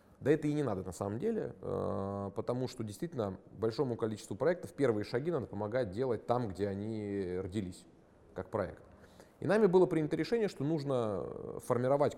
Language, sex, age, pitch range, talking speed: Russian, male, 30-49, 105-145 Hz, 165 wpm